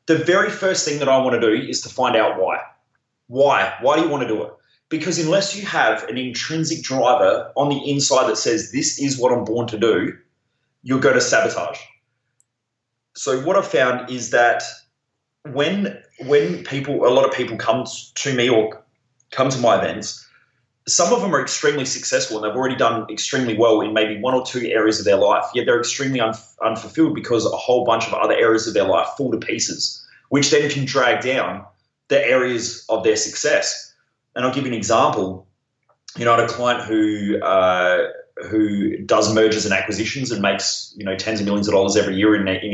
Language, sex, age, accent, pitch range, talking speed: English, male, 20-39, Australian, 110-140 Hz, 205 wpm